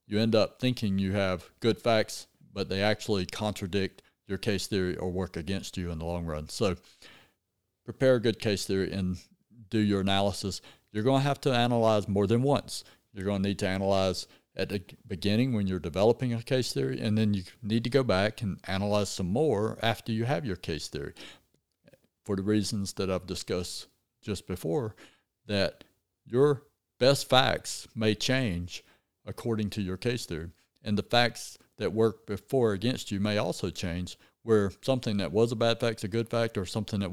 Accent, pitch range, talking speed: American, 90-115 Hz, 190 wpm